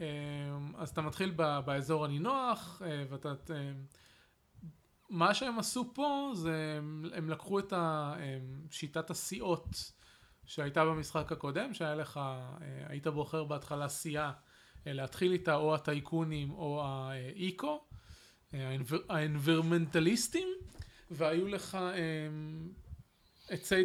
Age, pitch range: 20-39, 145-180 Hz